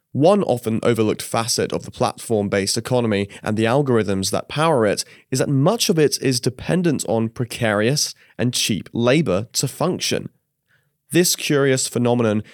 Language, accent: English, British